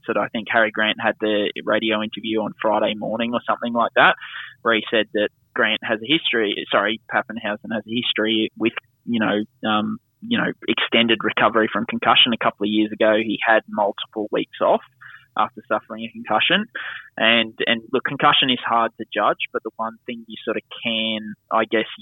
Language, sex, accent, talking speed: English, male, Australian, 195 wpm